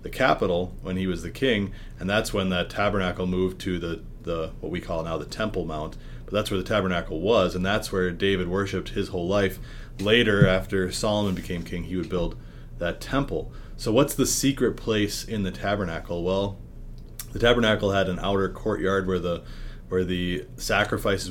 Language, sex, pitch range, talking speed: English, male, 90-100 Hz, 190 wpm